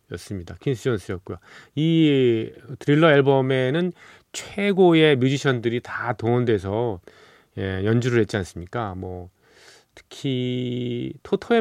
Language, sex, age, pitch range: Korean, male, 40-59, 105-135 Hz